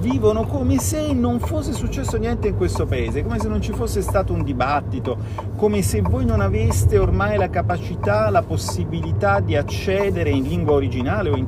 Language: Italian